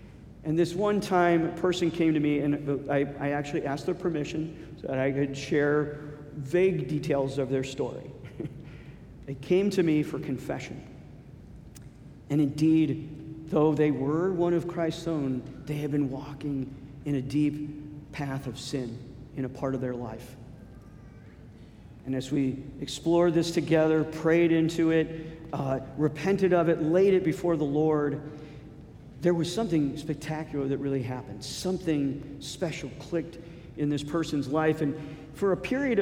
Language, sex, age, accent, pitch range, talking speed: English, male, 50-69, American, 140-175 Hz, 155 wpm